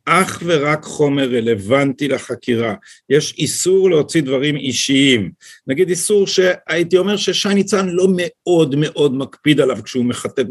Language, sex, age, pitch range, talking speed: Hebrew, male, 50-69, 130-175 Hz, 130 wpm